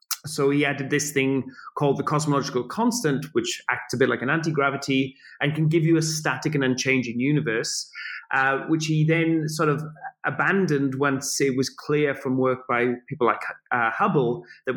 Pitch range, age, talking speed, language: 135-170 Hz, 30-49, 180 wpm, English